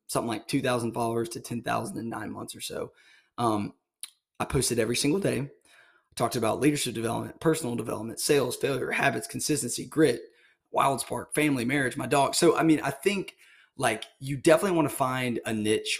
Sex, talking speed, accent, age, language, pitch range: male, 180 wpm, American, 20-39, English, 115-140 Hz